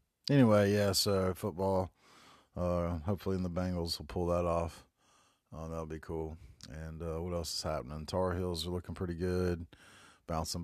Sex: male